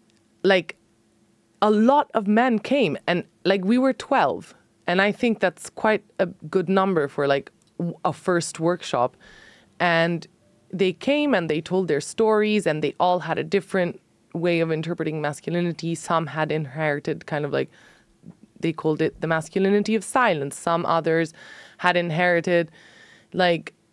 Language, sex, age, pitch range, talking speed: English, female, 20-39, 155-190 Hz, 150 wpm